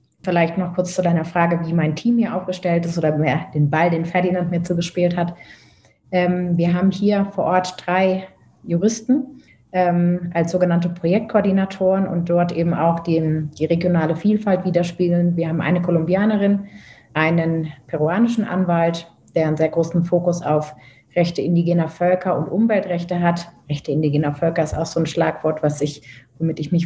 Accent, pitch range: German, 160-180 Hz